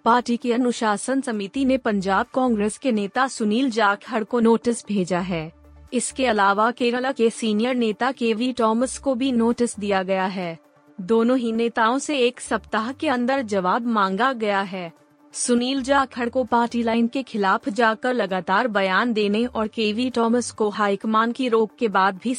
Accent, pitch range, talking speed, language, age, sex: native, 205-250 Hz, 170 wpm, Hindi, 30-49, female